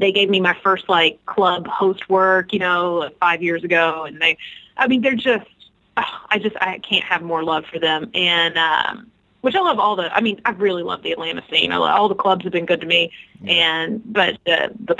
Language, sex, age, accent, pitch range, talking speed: English, female, 30-49, American, 170-200 Hz, 240 wpm